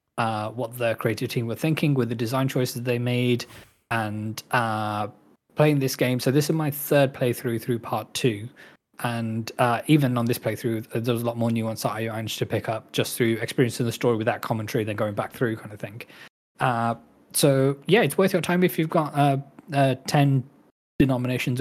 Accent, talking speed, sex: British, 205 wpm, male